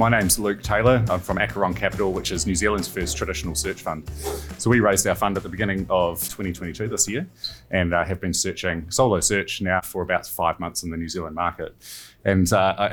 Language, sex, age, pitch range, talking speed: English, male, 30-49, 95-115 Hz, 220 wpm